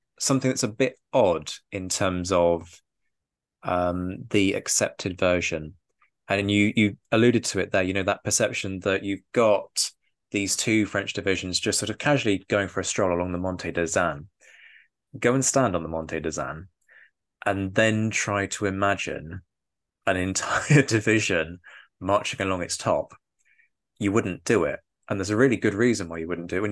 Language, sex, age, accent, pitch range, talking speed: English, male, 20-39, British, 90-110 Hz, 175 wpm